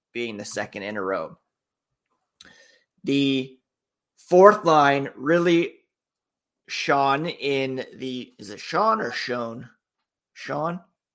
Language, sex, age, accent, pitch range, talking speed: English, male, 30-49, American, 130-155 Hz, 100 wpm